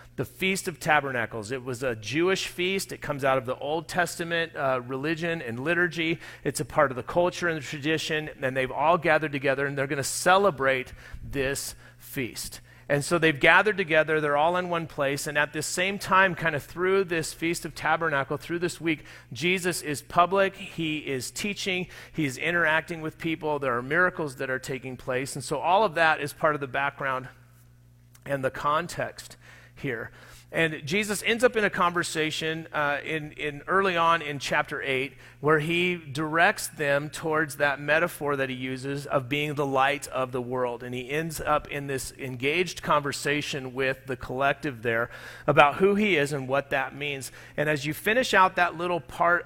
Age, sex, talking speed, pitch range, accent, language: 40-59, male, 190 wpm, 135-170 Hz, American, English